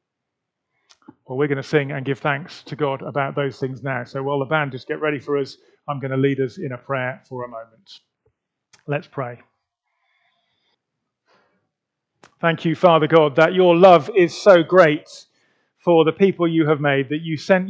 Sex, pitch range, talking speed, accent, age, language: male, 130-160 Hz, 185 wpm, British, 40-59, English